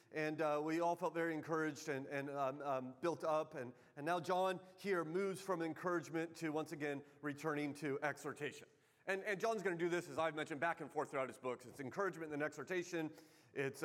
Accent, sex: American, male